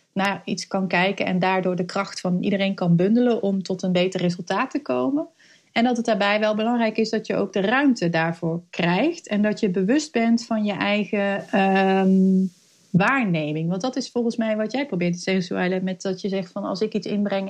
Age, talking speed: 30-49, 215 wpm